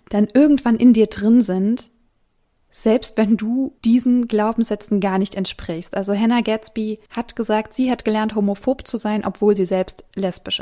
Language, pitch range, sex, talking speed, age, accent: German, 200-235 Hz, female, 165 wpm, 20-39, German